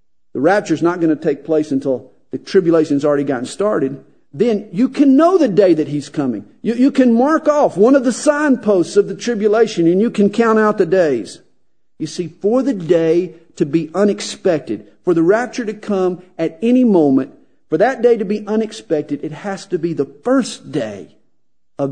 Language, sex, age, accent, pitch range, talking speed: English, male, 50-69, American, 125-210 Hz, 200 wpm